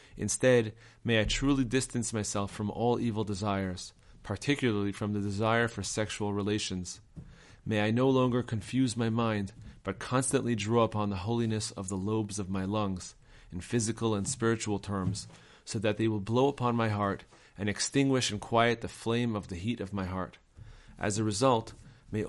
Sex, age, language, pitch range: male, 30-49, English, 100-120 Hz